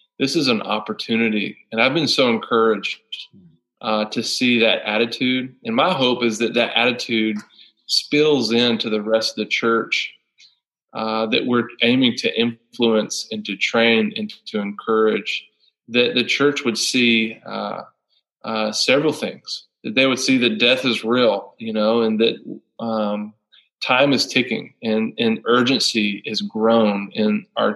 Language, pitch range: English, 110-130 Hz